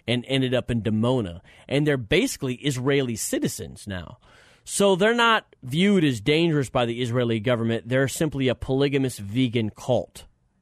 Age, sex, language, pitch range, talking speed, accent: 30-49, male, English, 125-165 Hz, 155 wpm, American